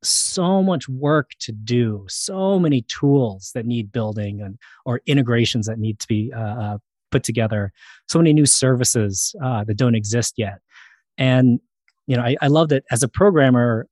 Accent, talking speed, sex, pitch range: American, 175 wpm, male, 115-140 Hz